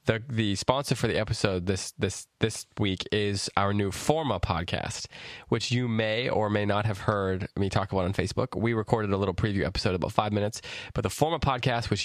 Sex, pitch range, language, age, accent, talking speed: male, 95-115 Hz, English, 20-39, American, 210 wpm